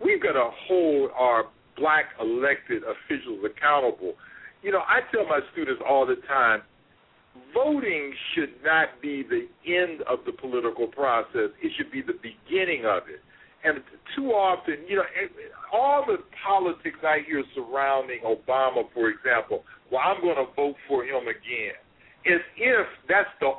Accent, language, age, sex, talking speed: American, English, 50-69, male, 155 wpm